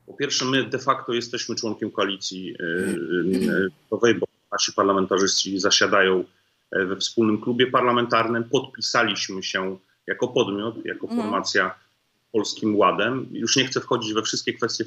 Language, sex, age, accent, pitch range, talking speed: Polish, male, 30-49, native, 95-115 Hz, 125 wpm